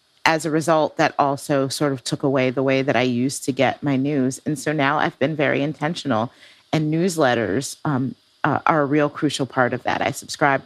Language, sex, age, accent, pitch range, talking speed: English, female, 40-59, American, 135-160 Hz, 215 wpm